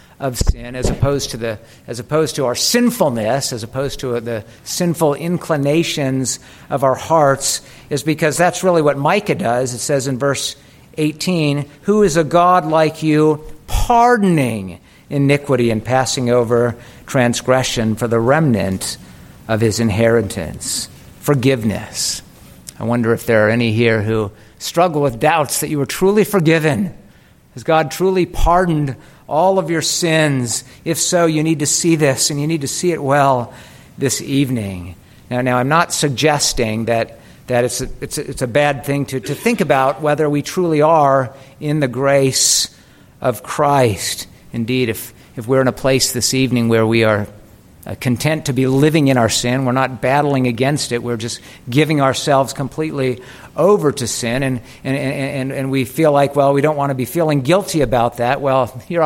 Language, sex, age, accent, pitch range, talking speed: English, male, 50-69, American, 120-155 Hz, 170 wpm